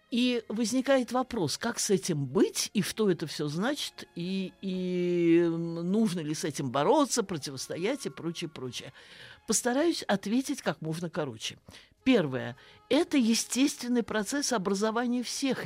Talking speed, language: 130 wpm, Russian